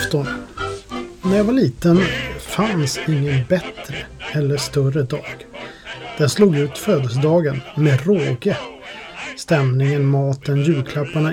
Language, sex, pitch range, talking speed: Swedish, male, 135-160 Hz, 100 wpm